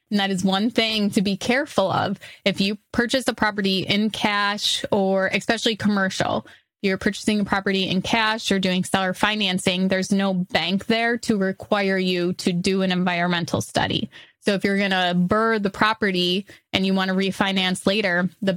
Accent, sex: American, female